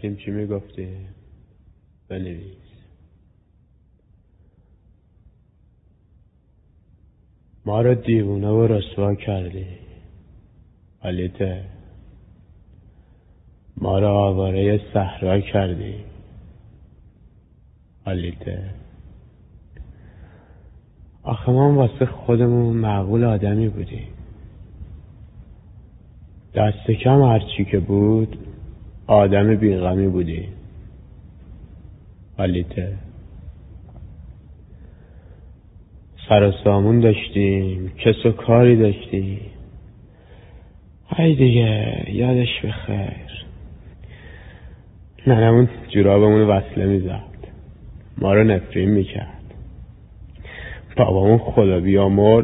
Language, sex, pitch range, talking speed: Persian, male, 90-110 Hz, 65 wpm